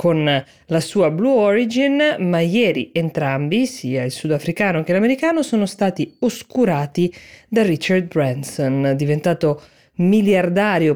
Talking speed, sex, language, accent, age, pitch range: 115 wpm, female, Italian, native, 20-39, 145-200 Hz